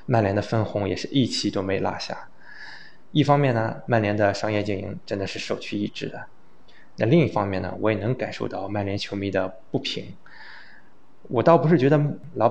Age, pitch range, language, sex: 20-39, 100-120 Hz, Chinese, male